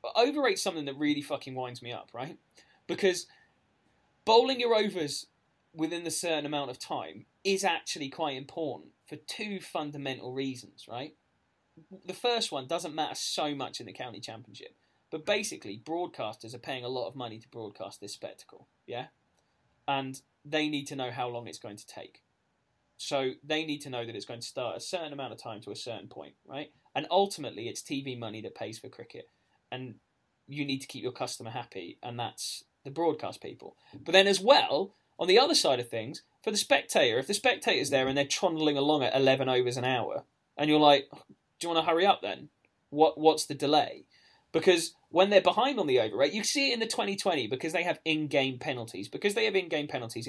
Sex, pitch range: male, 125-175 Hz